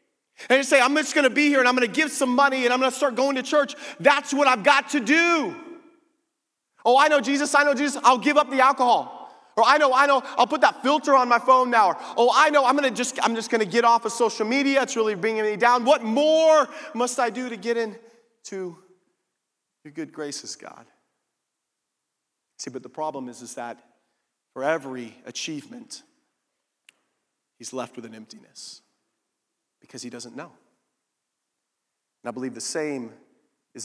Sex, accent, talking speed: male, American, 195 wpm